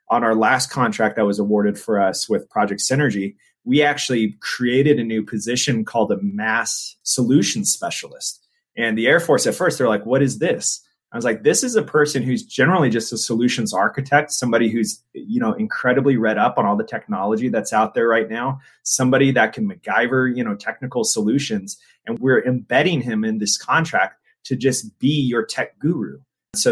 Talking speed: 190 wpm